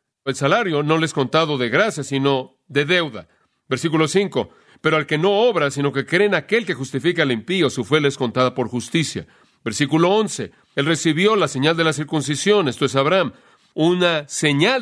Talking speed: 195 wpm